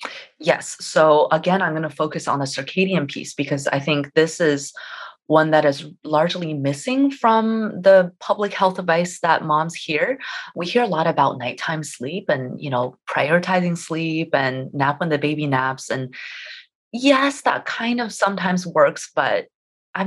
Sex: female